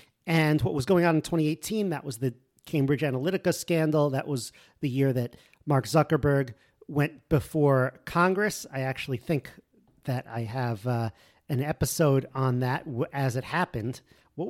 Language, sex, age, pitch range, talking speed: English, male, 40-59, 135-170 Hz, 155 wpm